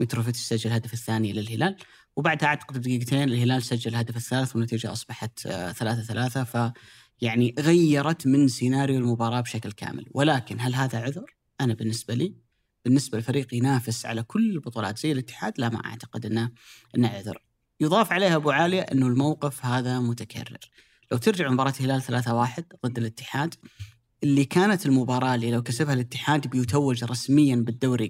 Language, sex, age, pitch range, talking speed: Arabic, female, 30-49, 120-150 Hz, 145 wpm